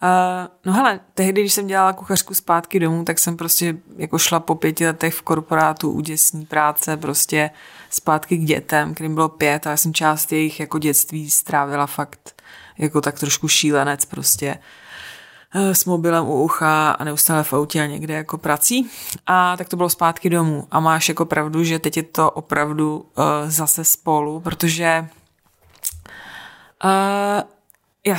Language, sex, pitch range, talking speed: Czech, female, 155-170 Hz, 155 wpm